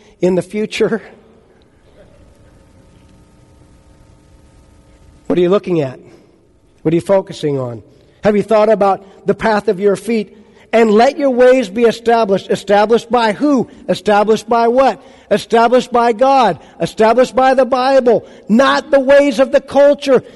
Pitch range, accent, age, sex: 175-235 Hz, American, 50-69, male